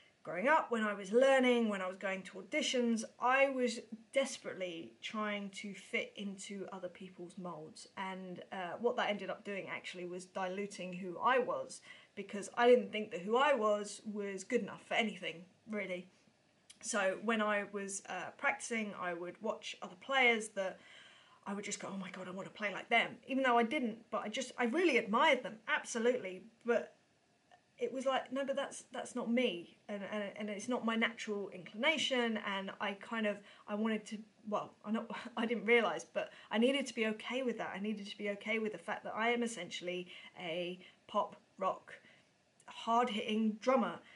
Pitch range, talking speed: 195-240 Hz, 195 wpm